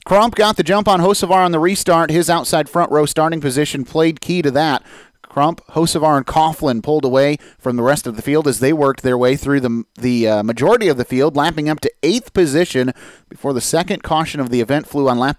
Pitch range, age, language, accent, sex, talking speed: 130-165 Hz, 30-49, English, American, male, 230 wpm